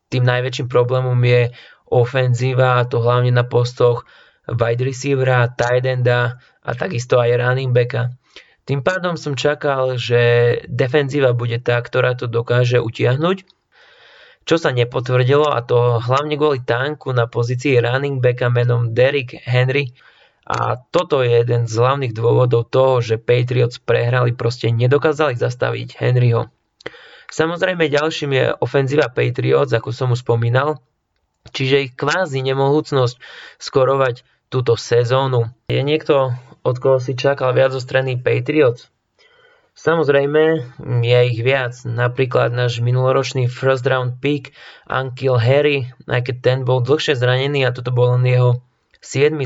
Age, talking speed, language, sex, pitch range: 20-39, 135 wpm, Slovak, male, 120-140 Hz